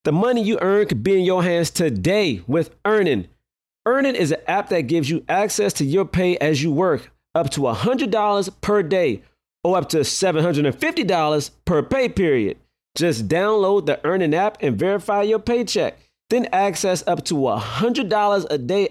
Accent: American